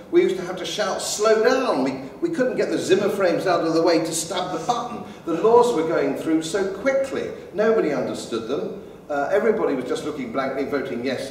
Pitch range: 130-185 Hz